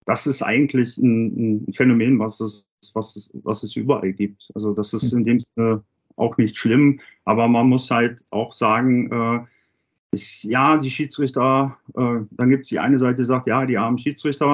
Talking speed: 190 wpm